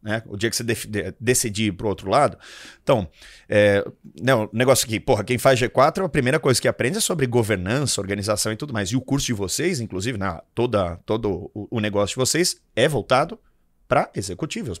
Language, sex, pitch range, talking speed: Portuguese, male, 115-170 Hz, 205 wpm